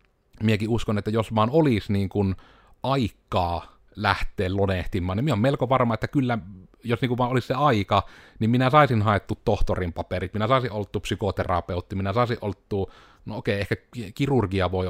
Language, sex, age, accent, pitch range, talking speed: Finnish, male, 30-49, native, 95-120 Hz, 170 wpm